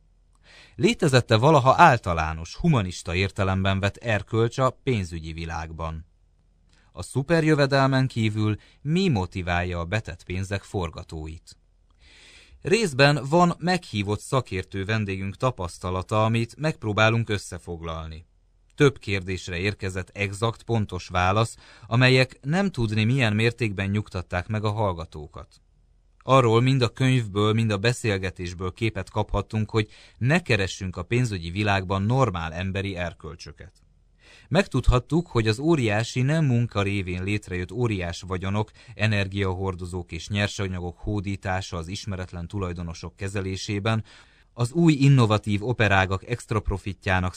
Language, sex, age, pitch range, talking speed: Hungarian, male, 30-49, 90-115 Hz, 105 wpm